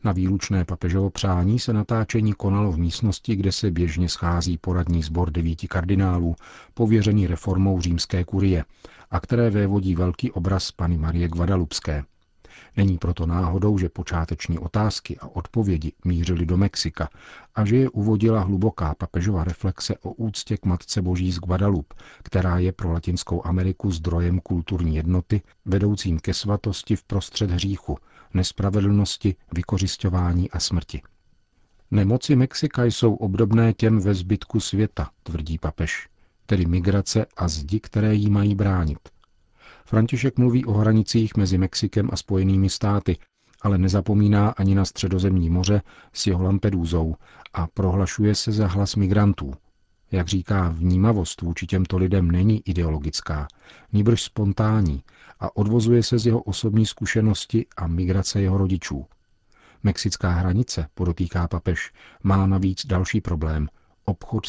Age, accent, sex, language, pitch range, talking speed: 50-69, native, male, Czech, 85-105 Hz, 135 wpm